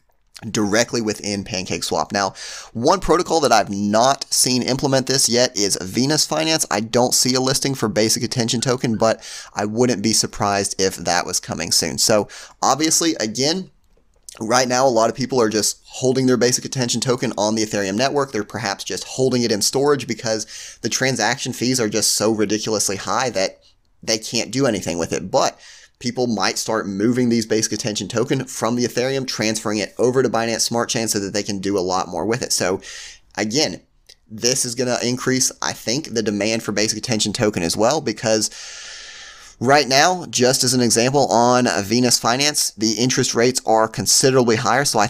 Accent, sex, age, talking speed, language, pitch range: American, male, 30-49, 190 wpm, English, 105-125 Hz